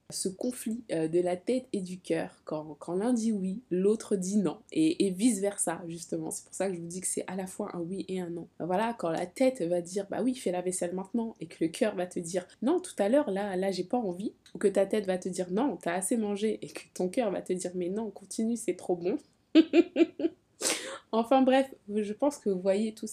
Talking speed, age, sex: 275 wpm, 20-39, female